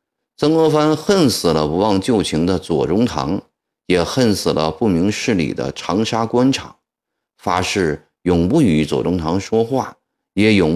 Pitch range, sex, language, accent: 90-130 Hz, male, Chinese, native